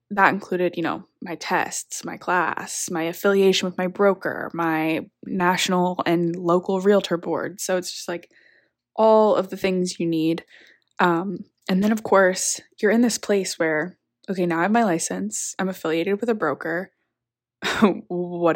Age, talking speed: 20-39, 165 wpm